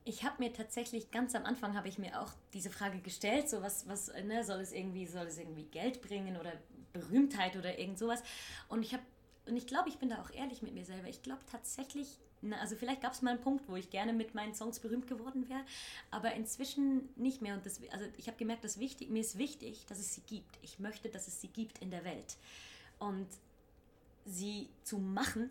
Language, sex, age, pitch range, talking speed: German, female, 20-39, 180-230 Hz, 230 wpm